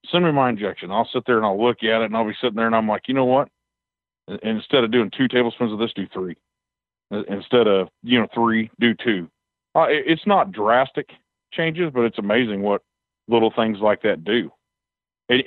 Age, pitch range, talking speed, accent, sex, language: 40-59, 105-125 Hz, 210 wpm, American, male, English